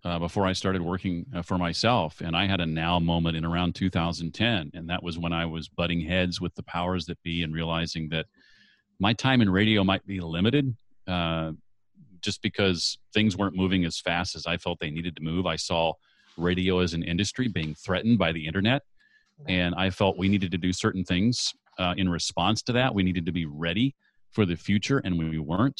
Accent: American